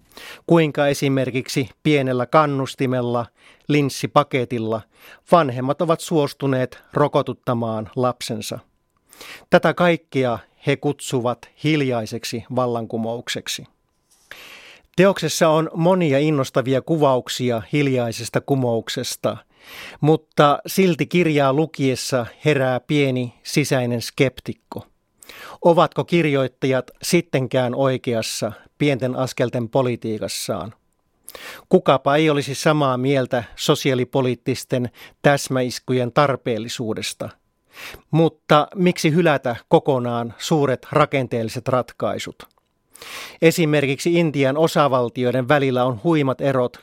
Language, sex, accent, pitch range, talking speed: Finnish, male, native, 125-150 Hz, 75 wpm